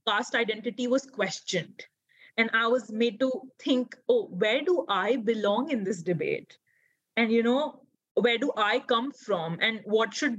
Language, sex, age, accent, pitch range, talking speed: English, female, 20-39, Indian, 210-265 Hz, 170 wpm